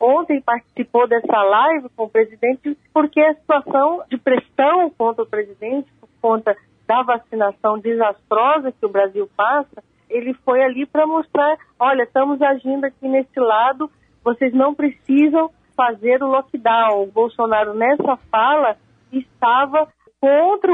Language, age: Portuguese, 40-59